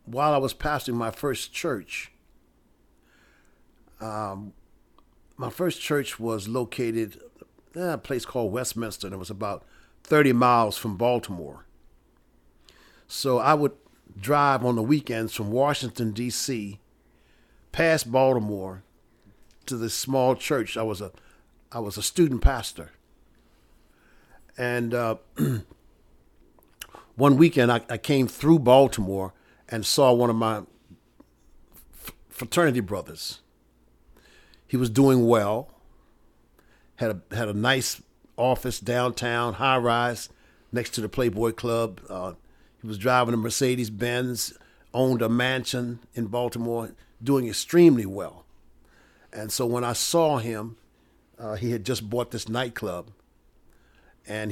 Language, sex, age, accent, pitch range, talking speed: English, male, 50-69, American, 105-125 Hz, 125 wpm